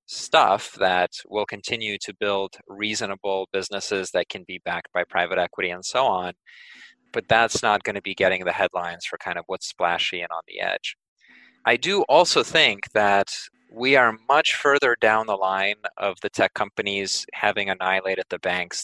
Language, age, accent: English, 20-39, American